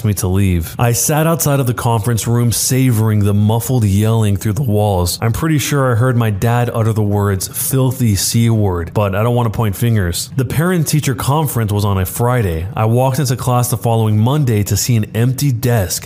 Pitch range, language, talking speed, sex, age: 110-145 Hz, English, 205 wpm, male, 30-49